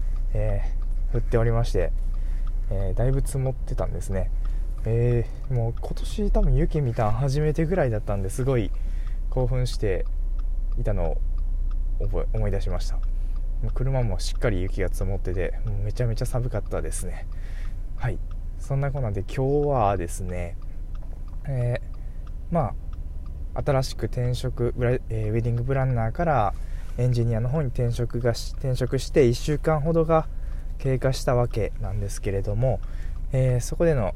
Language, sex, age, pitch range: Japanese, male, 20-39, 85-125 Hz